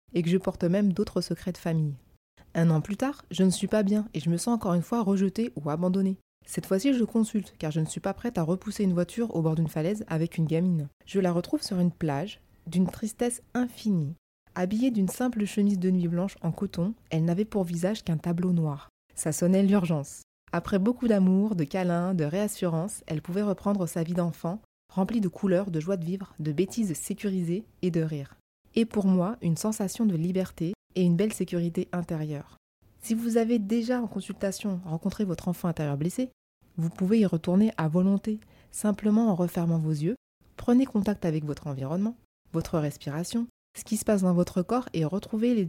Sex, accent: female, French